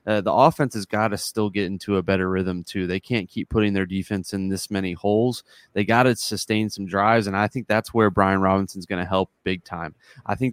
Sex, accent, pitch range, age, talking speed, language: male, American, 95-115 Hz, 20-39, 245 wpm, English